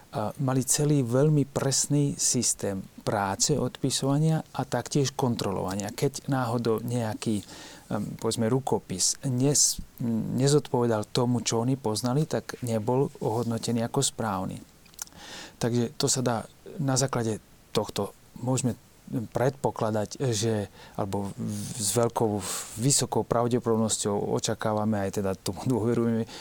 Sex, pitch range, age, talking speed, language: male, 110-130 Hz, 30-49, 100 wpm, Slovak